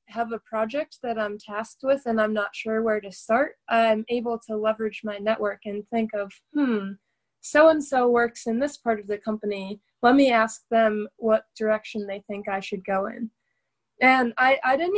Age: 20-39